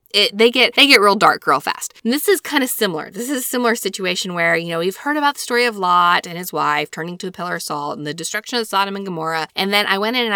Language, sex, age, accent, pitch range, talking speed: English, female, 20-39, American, 170-230 Hz, 290 wpm